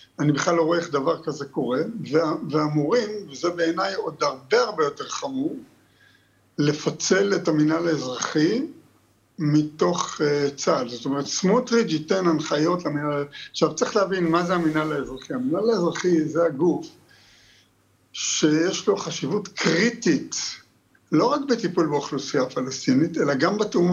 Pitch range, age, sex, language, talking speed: 155-215 Hz, 60-79, male, Hebrew, 130 wpm